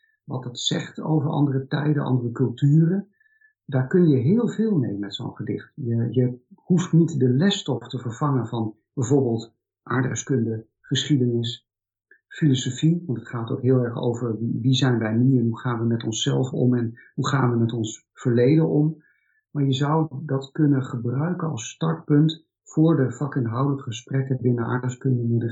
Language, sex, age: Dutch, male, 50-69